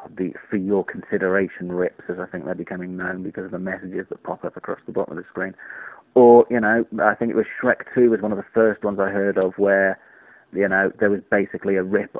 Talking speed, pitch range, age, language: 245 wpm, 95-115 Hz, 30-49, English